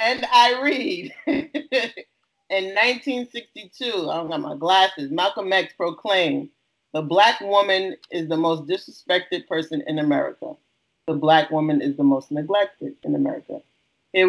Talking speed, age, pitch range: 140 wpm, 30-49, 150-185 Hz